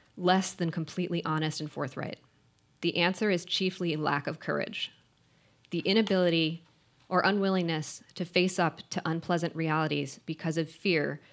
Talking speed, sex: 140 wpm, female